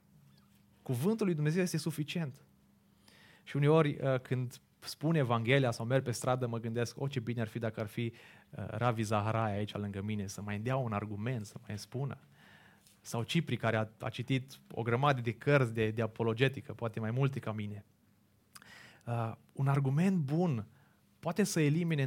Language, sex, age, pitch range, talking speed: Romanian, male, 30-49, 115-150 Hz, 175 wpm